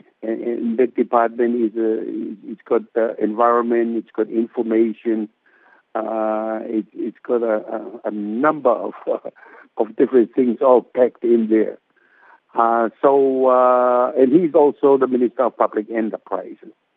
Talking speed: 140 wpm